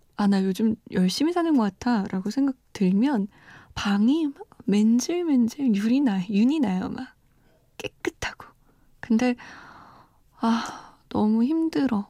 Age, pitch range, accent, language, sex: 20-39, 205-280 Hz, native, Korean, female